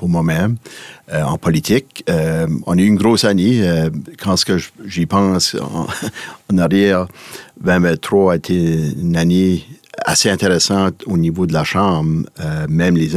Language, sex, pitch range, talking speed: French, male, 80-90 Hz, 150 wpm